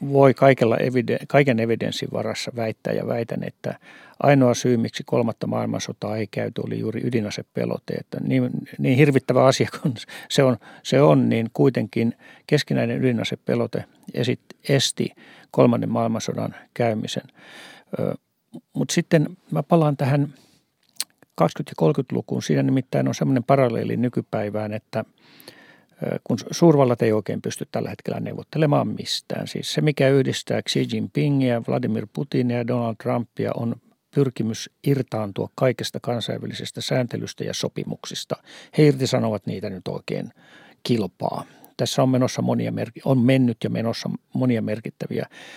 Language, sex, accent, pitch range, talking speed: Finnish, male, native, 115-135 Hz, 130 wpm